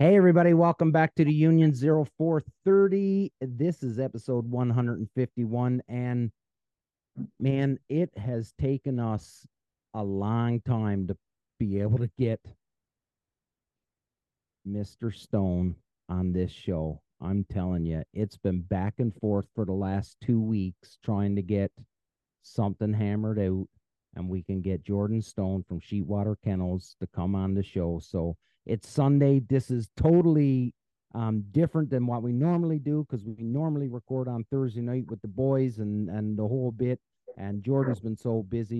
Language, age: English, 40-59